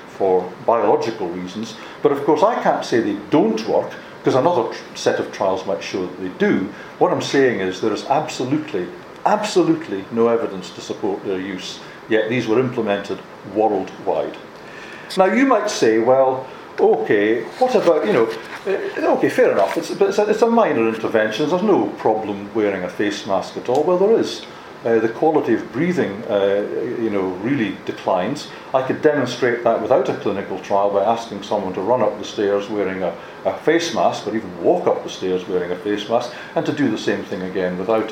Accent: British